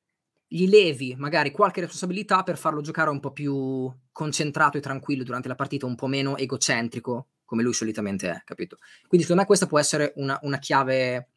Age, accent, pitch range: 20-39, native, 125-160 Hz